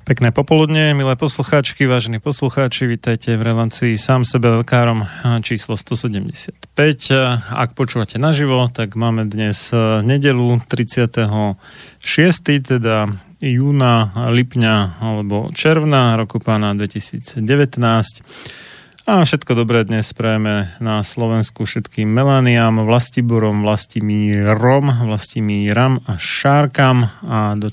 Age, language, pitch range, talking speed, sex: 30-49, Slovak, 110-130 Hz, 105 wpm, male